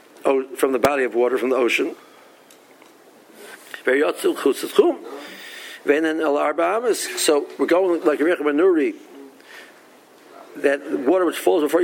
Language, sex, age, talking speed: English, male, 50-69, 95 wpm